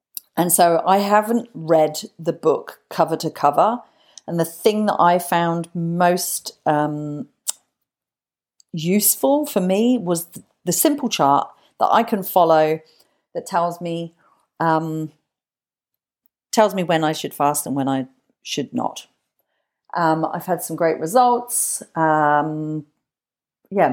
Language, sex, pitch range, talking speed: English, female, 155-195 Hz, 130 wpm